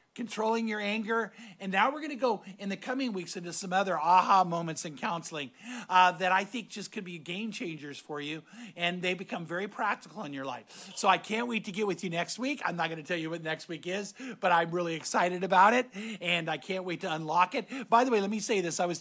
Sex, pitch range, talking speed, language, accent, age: male, 160-215 Hz, 255 wpm, English, American, 50-69